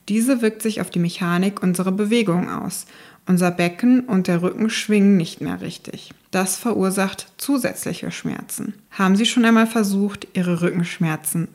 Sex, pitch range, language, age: female, 180-220 Hz, German, 20-39